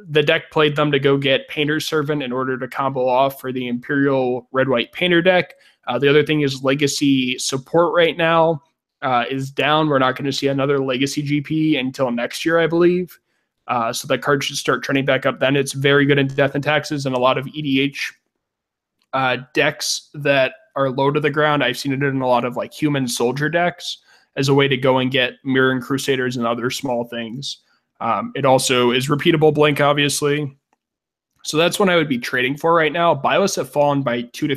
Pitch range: 125-150 Hz